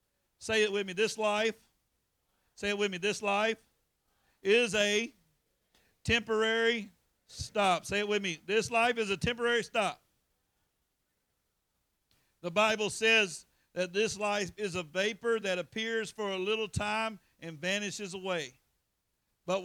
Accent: American